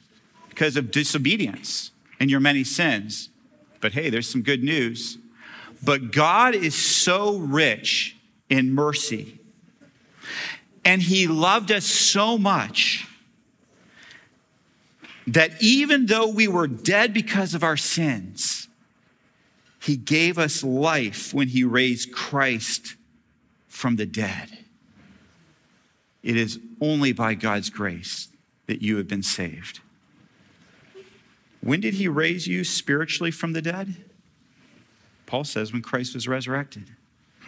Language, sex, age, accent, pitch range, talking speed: English, male, 40-59, American, 115-165 Hz, 115 wpm